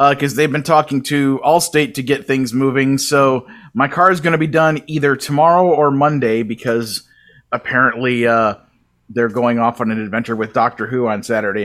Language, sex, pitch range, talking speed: English, male, 125-150 Hz, 190 wpm